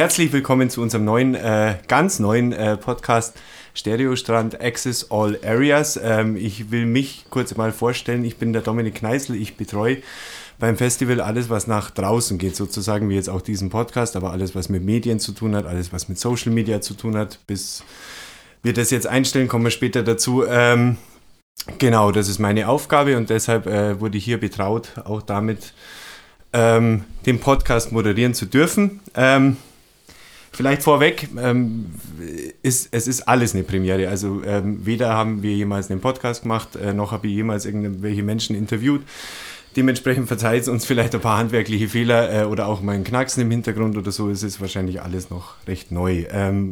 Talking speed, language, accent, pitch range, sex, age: 180 wpm, German, German, 100-120 Hz, male, 20-39